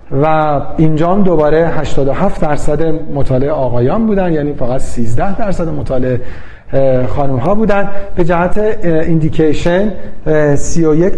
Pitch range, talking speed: 135-180 Hz, 105 wpm